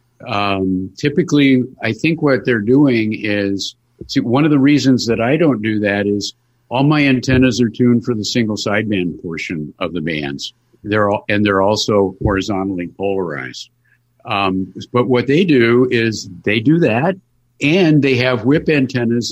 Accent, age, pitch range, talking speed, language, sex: American, 50-69, 105-130 Hz, 165 wpm, English, male